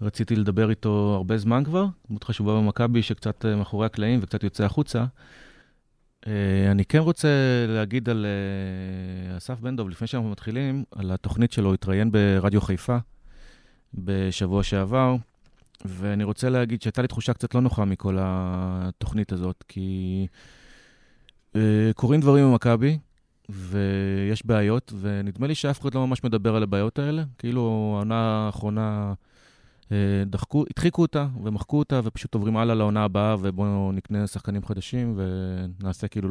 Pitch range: 100-125 Hz